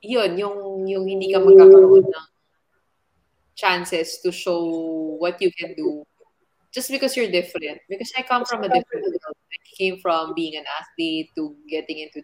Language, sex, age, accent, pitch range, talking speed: Filipino, female, 20-39, native, 165-215 Hz, 155 wpm